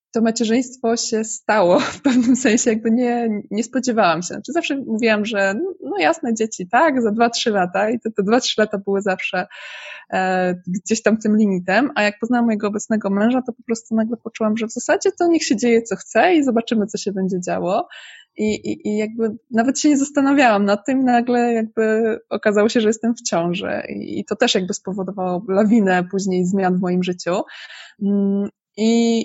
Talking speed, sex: 195 wpm, female